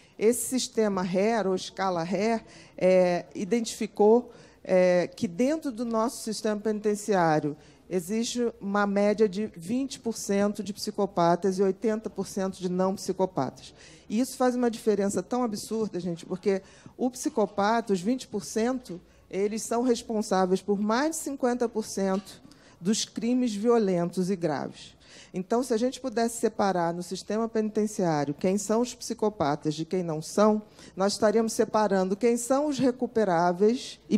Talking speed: 135 wpm